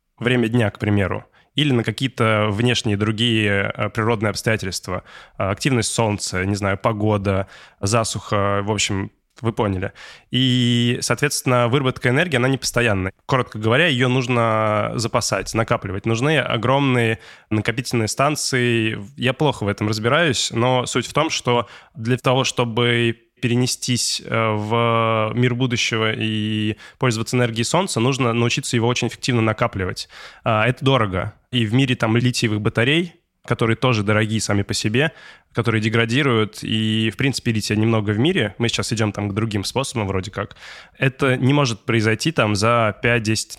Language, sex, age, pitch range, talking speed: Russian, male, 20-39, 105-125 Hz, 145 wpm